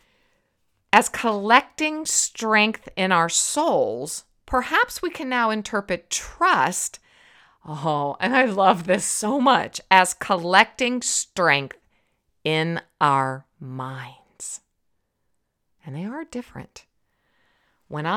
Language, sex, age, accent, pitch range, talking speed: English, female, 50-69, American, 185-275 Hz, 100 wpm